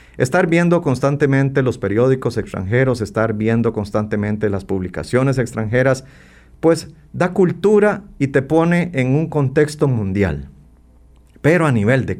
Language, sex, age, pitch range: Spanish, male, 40-59, 105-155 Hz